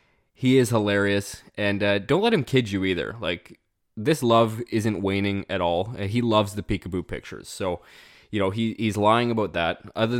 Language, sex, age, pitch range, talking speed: English, male, 20-39, 95-115 Hz, 180 wpm